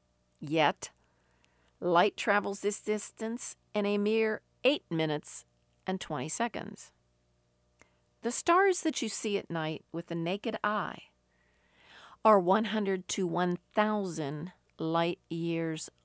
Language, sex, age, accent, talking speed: English, female, 50-69, American, 110 wpm